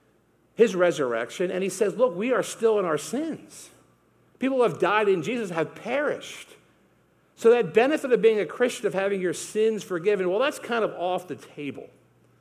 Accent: American